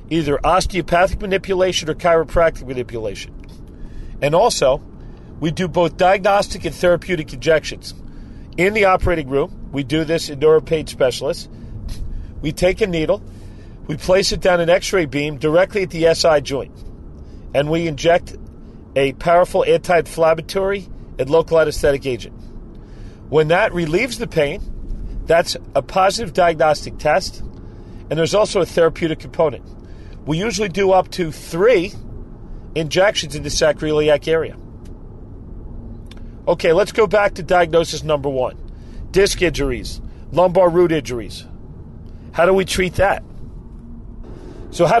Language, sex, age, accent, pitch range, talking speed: English, male, 40-59, American, 120-180 Hz, 130 wpm